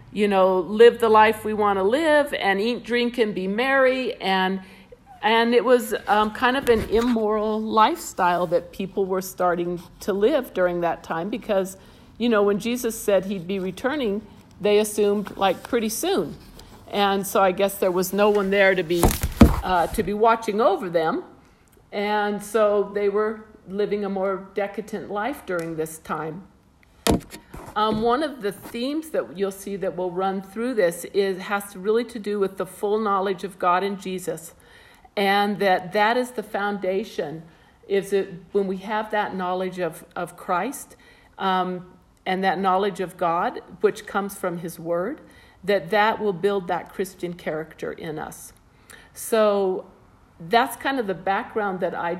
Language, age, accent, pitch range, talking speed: English, 50-69, American, 185-215 Hz, 170 wpm